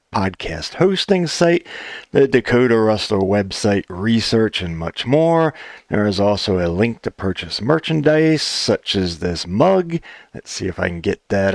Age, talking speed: 40-59, 155 wpm